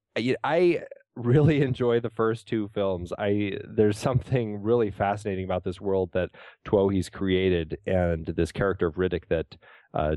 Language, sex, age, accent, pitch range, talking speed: English, male, 30-49, American, 90-110 Hz, 150 wpm